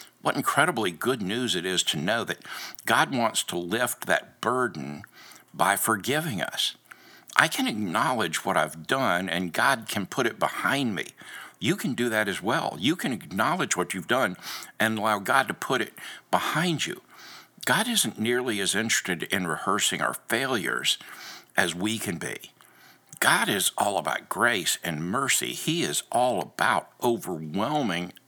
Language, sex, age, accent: English, male, 60-79, American